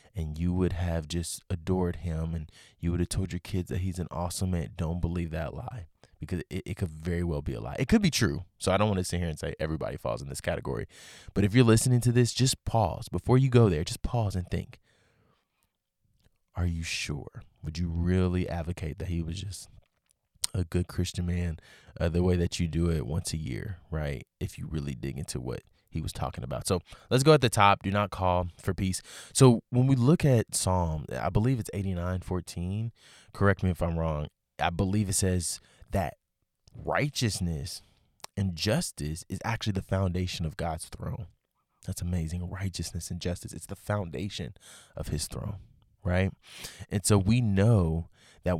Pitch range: 85-110 Hz